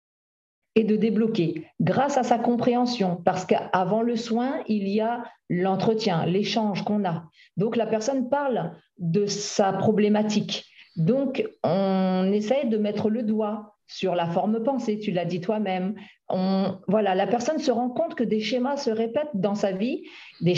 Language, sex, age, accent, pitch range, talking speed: French, female, 50-69, French, 195-245 Hz, 165 wpm